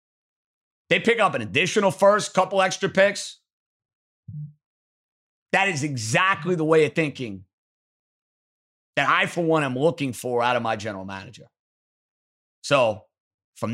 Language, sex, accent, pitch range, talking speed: English, male, American, 145-220 Hz, 130 wpm